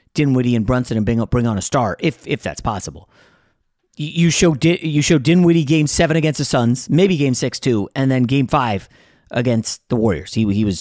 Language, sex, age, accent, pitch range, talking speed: English, male, 30-49, American, 115-155 Hz, 205 wpm